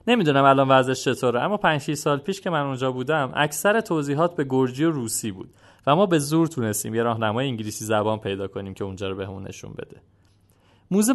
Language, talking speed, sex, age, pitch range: Persian, 210 wpm, male, 30-49, 115-170 Hz